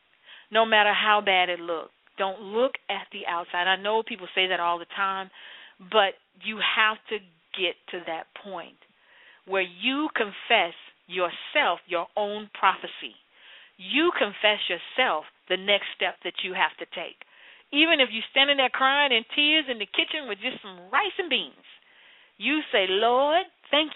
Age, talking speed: 40-59, 165 wpm